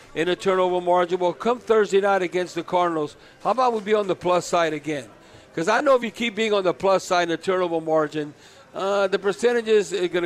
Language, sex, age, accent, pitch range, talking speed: English, male, 50-69, American, 165-200 Hz, 235 wpm